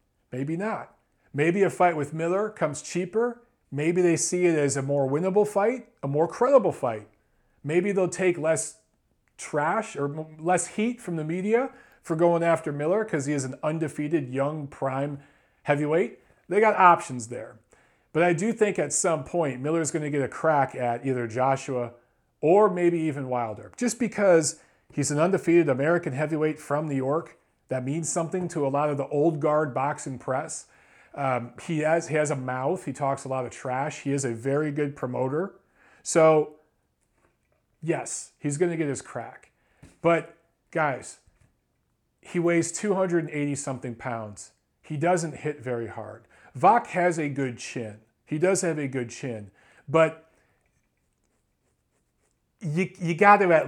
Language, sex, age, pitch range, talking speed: English, male, 40-59, 135-170 Hz, 165 wpm